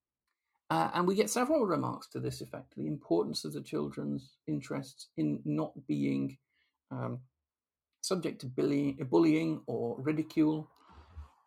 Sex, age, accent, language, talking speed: male, 50-69, British, English, 125 wpm